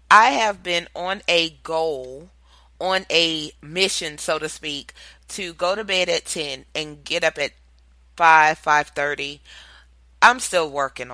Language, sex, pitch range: English, female, 150-185 Hz